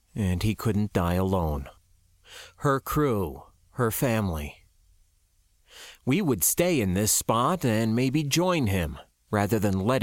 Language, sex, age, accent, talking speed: English, male, 40-59, American, 130 wpm